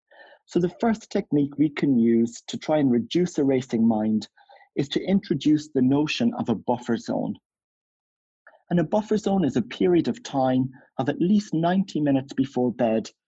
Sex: male